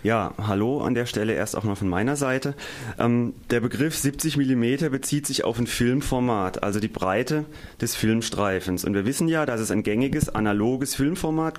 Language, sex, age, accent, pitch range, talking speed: German, male, 30-49, German, 105-135 Hz, 185 wpm